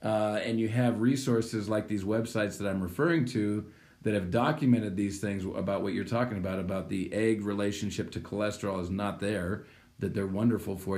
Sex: male